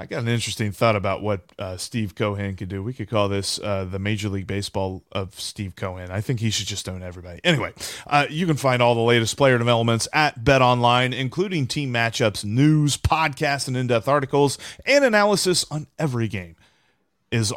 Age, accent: 30-49, American